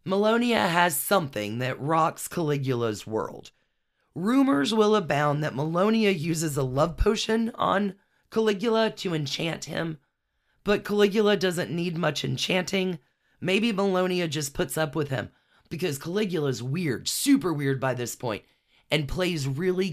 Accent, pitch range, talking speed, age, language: American, 145-200 Hz, 135 wpm, 30-49, English